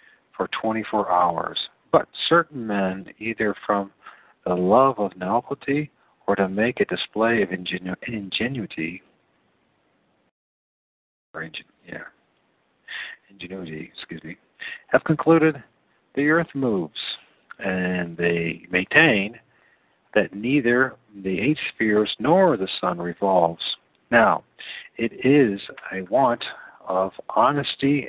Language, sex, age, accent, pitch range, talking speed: English, male, 50-69, American, 90-120 Hz, 105 wpm